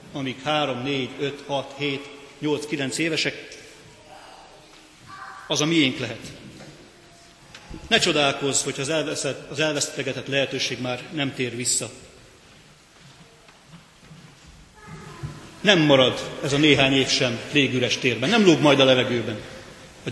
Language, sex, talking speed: Hungarian, male, 115 wpm